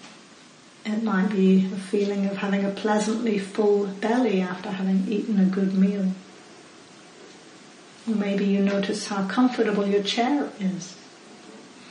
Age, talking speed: 40-59, 130 wpm